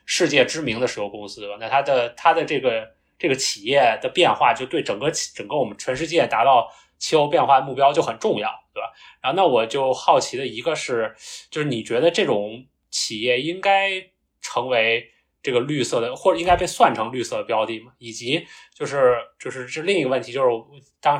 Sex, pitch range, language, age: male, 110-155 Hz, Chinese, 20-39